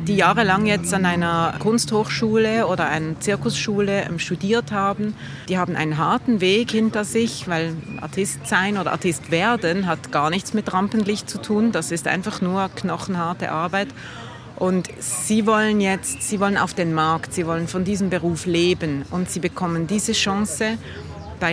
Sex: female